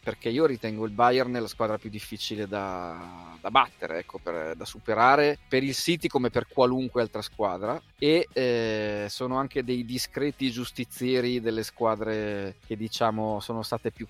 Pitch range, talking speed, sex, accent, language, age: 105-125 Hz, 165 wpm, male, native, Italian, 30-49